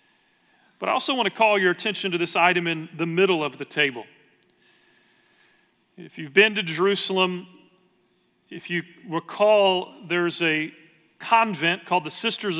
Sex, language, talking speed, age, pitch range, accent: male, English, 150 wpm, 40-59, 165-195 Hz, American